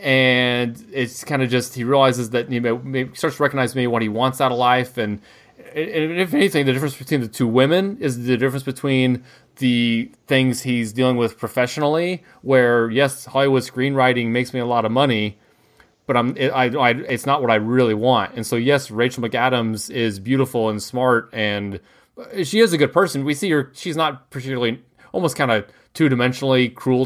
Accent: American